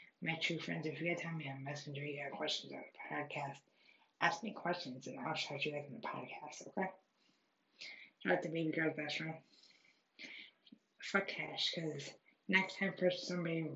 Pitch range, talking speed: 145-180 Hz, 185 wpm